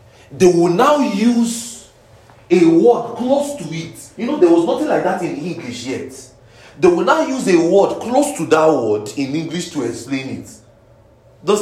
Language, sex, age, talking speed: English, male, 40-59, 180 wpm